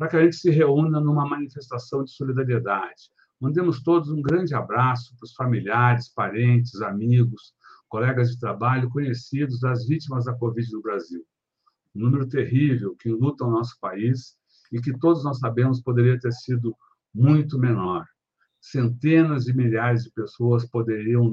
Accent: Brazilian